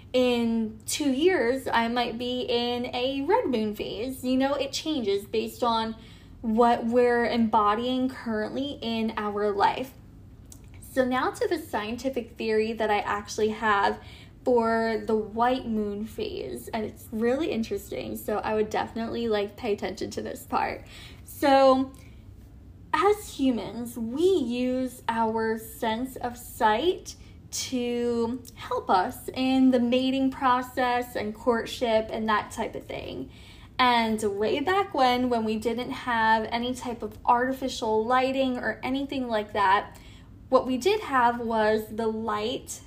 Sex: female